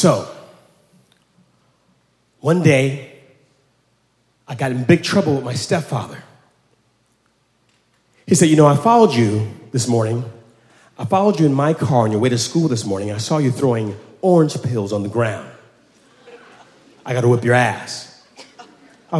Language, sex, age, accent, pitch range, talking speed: English, male, 40-59, American, 105-145 Hz, 155 wpm